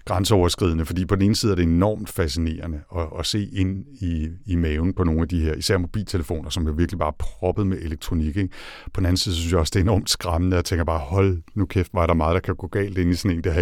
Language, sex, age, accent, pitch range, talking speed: Danish, male, 60-79, native, 80-100 Hz, 285 wpm